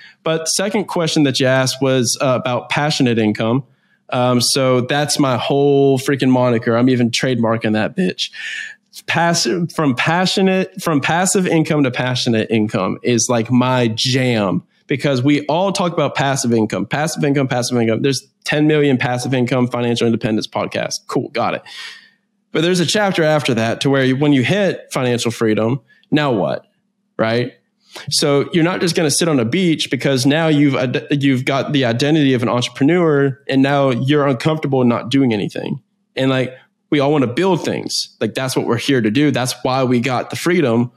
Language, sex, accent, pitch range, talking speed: English, male, American, 125-165 Hz, 180 wpm